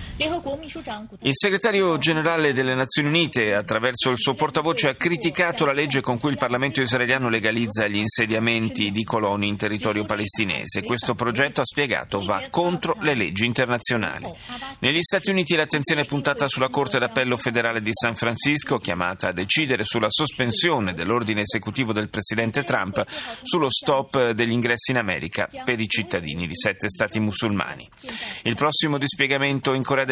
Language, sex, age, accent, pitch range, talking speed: Italian, male, 30-49, native, 110-145 Hz, 155 wpm